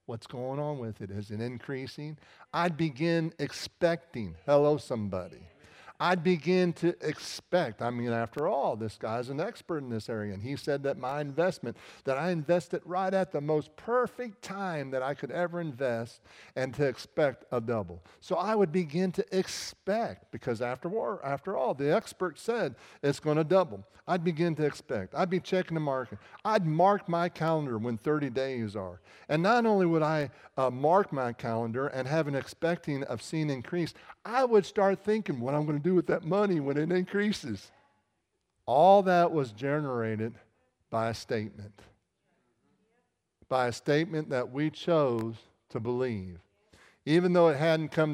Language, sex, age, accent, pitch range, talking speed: English, male, 50-69, American, 125-170 Hz, 170 wpm